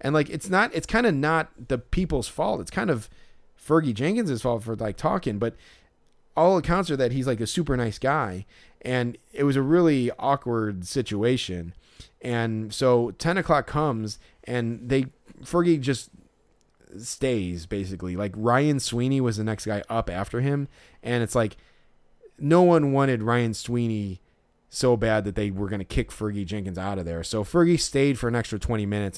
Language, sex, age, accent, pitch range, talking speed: English, male, 30-49, American, 100-135 Hz, 180 wpm